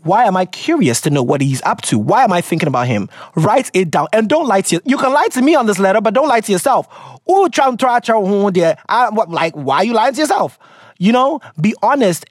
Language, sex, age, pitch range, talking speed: English, male, 30-49, 160-230 Hz, 235 wpm